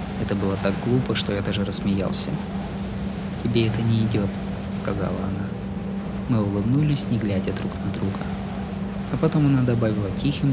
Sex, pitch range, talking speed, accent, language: male, 100-145 Hz, 150 wpm, native, Russian